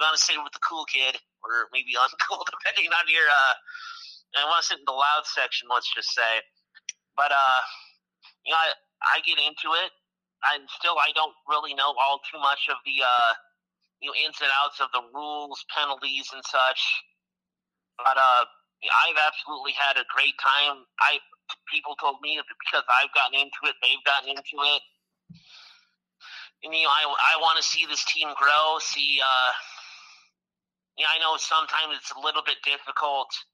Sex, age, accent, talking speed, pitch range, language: male, 30-49, American, 185 wpm, 140-180 Hz, English